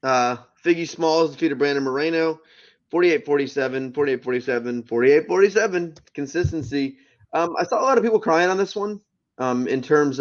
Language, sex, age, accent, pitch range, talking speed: English, male, 20-39, American, 120-165 Hz, 160 wpm